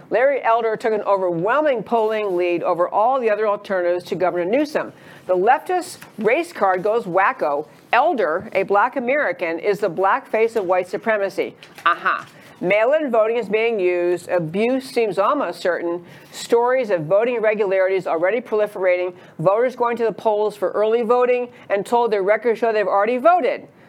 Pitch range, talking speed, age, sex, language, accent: 185-245 Hz, 165 wpm, 50-69, female, English, American